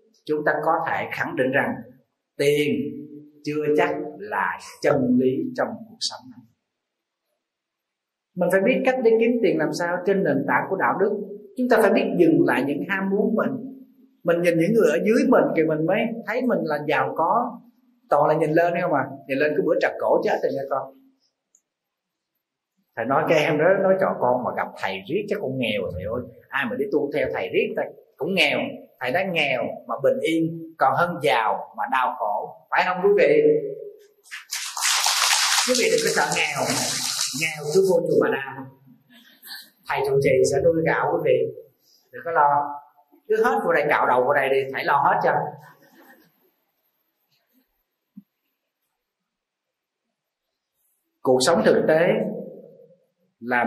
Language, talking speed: Vietnamese, 180 wpm